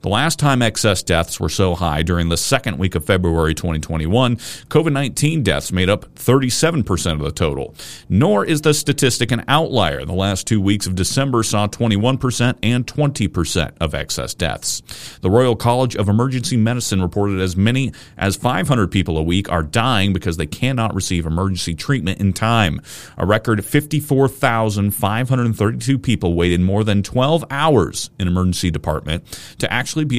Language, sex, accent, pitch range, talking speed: English, male, American, 90-120 Hz, 160 wpm